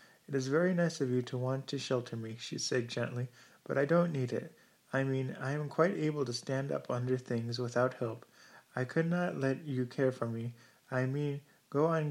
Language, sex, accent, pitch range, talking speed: English, male, American, 125-140 Hz, 220 wpm